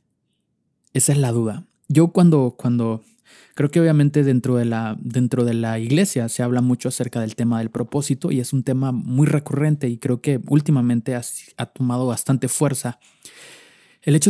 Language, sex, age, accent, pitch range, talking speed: Spanish, male, 20-39, Mexican, 120-145 Hz, 165 wpm